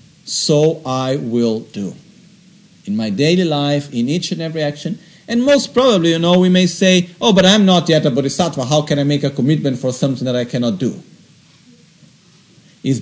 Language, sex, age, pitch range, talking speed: Italian, male, 50-69, 145-200 Hz, 190 wpm